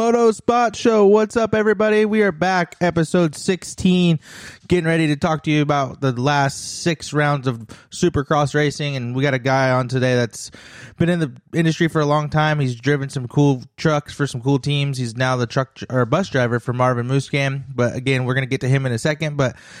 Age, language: 20-39, English